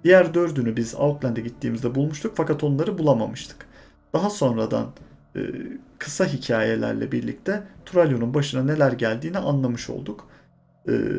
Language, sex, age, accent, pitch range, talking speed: Turkish, male, 40-59, native, 125-170 Hz, 120 wpm